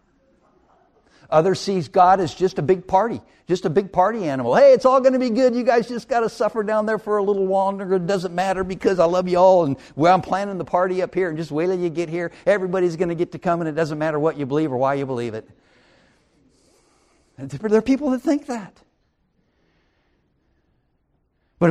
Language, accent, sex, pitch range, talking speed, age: English, American, male, 140-195 Hz, 220 wpm, 60-79